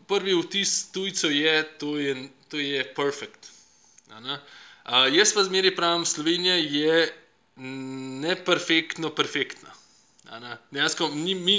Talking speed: 110 wpm